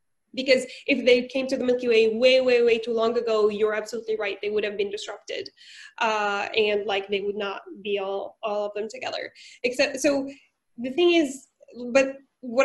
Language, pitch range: English, 225-275 Hz